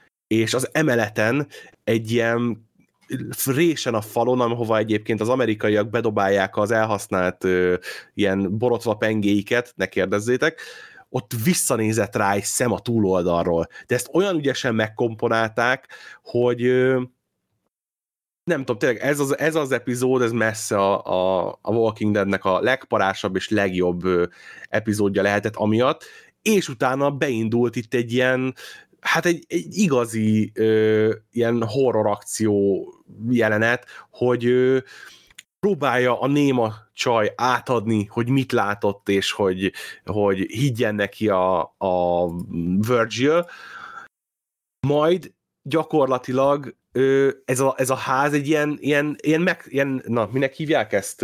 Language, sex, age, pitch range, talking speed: Hungarian, male, 20-39, 105-130 Hz, 125 wpm